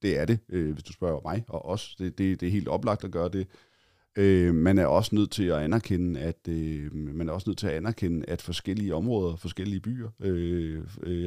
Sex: male